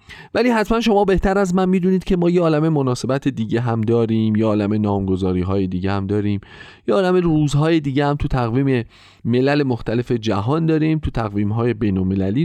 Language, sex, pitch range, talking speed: Persian, male, 100-150 Hz, 190 wpm